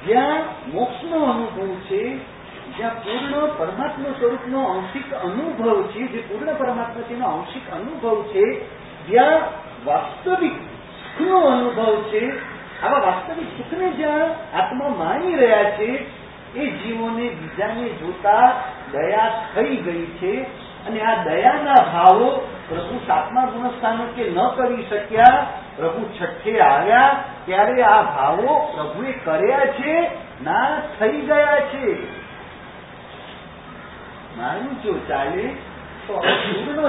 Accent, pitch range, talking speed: Indian, 220-305 Hz, 100 wpm